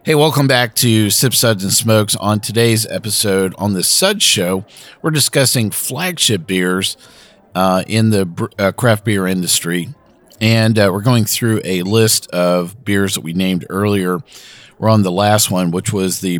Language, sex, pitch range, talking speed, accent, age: English, male, 95-120 Hz, 170 wpm, American, 40-59